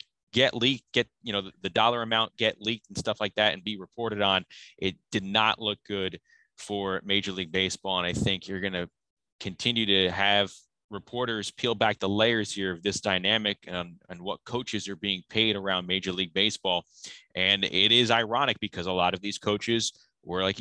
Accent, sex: American, male